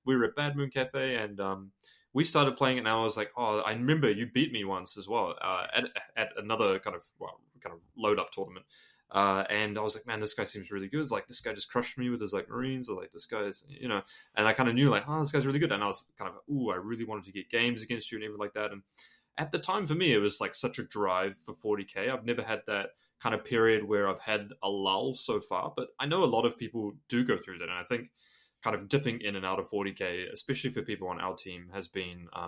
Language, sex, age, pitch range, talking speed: English, male, 20-39, 100-130 Hz, 280 wpm